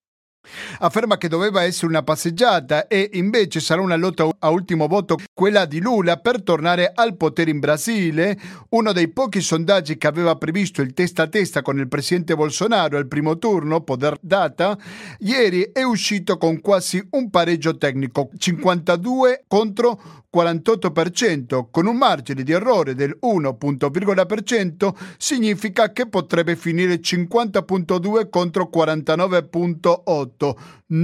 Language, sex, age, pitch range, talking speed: Italian, male, 50-69, 155-200 Hz, 130 wpm